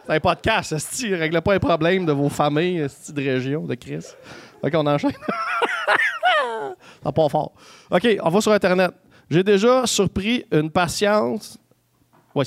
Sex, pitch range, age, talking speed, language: male, 155-210 Hz, 30-49, 160 wpm, English